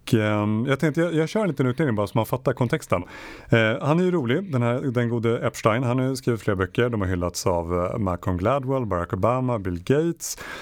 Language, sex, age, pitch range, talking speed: Swedish, male, 30-49, 95-130 Hz, 215 wpm